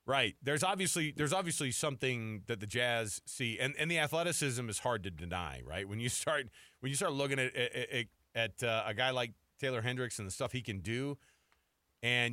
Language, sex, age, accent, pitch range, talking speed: English, male, 30-49, American, 110-150 Hz, 205 wpm